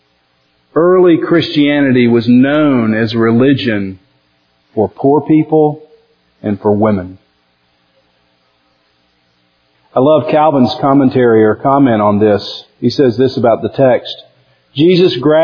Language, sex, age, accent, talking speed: English, male, 50-69, American, 105 wpm